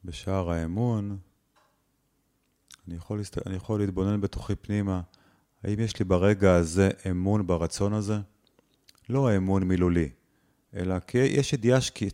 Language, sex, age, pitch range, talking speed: Hebrew, male, 30-49, 90-110 Hz, 130 wpm